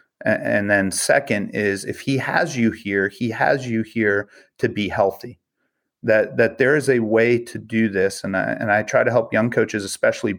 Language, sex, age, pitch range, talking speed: English, male, 30-49, 100-125 Hz, 200 wpm